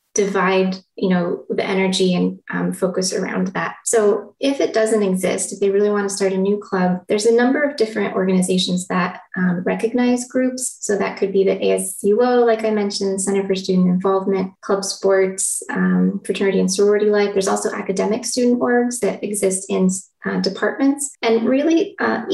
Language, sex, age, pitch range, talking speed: English, female, 20-39, 190-225 Hz, 180 wpm